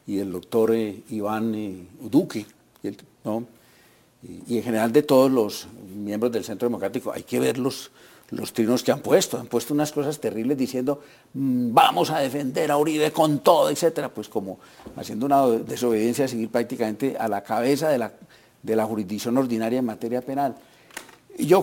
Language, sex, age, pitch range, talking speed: Spanish, male, 50-69, 115-140 Hz, 175 wpm